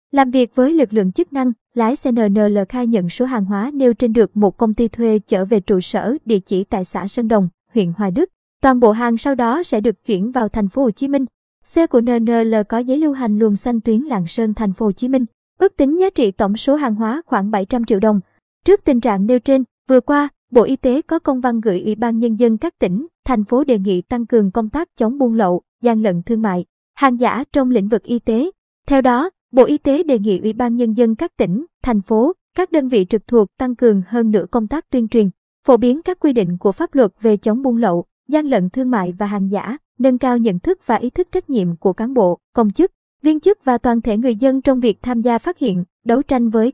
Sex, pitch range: male, 215-265 Hz